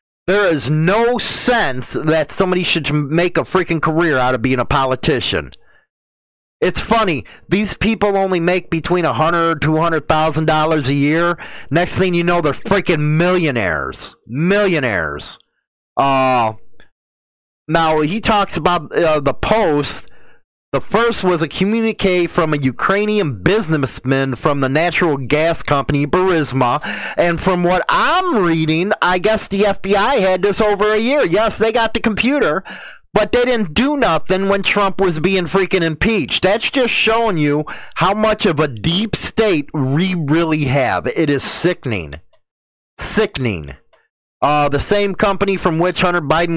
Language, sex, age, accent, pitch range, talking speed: English, male, 30-49, American, 145-200 Hz, 145 wpm